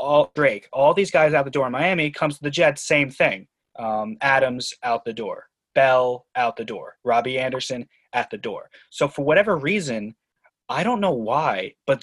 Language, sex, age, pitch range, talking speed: English, male, 20-39, 135-160 Hz, 195 wpm